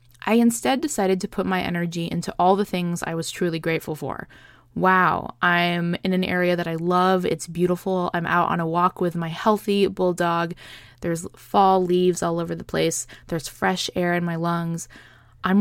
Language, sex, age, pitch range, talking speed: English, female, 20-39, 170-210 Hz, 190 wpm